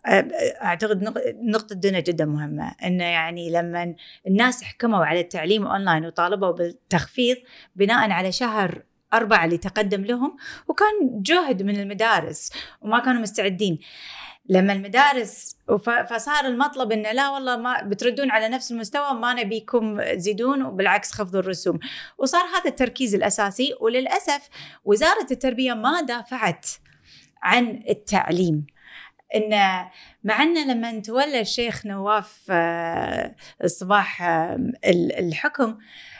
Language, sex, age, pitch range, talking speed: Arabic, female, 20-39, 185-255 Hz, 105 wpm